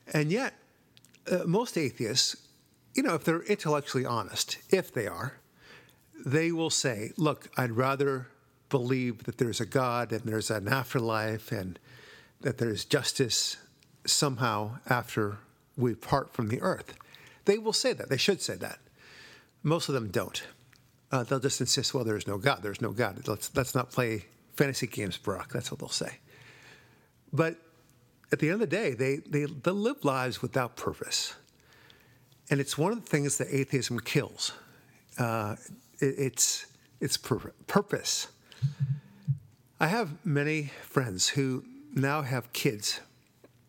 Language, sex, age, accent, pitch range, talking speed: English, male, 50-69, American, 120-145 Hz, 150 wpm